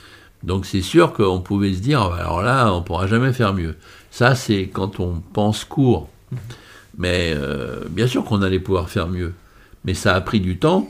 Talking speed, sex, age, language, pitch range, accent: 200 wpm, male, 60-79, French, 90-110 Hz, French